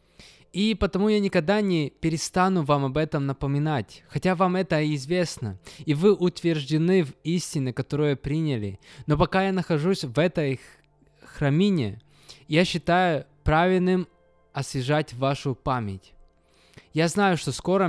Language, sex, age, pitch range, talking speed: Russian, male, 20-39, 125-165 Hz, 125 wpm